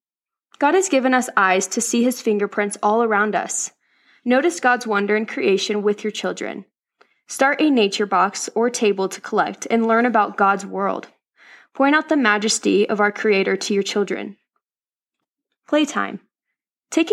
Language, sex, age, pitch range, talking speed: English, female, 20-39, 205-255 Hz, 160 wpm